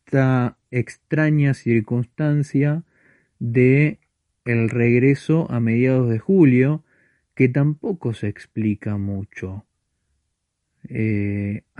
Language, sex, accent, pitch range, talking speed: Spanish, male, Argentinian, 105-135 Hz, 80 wpm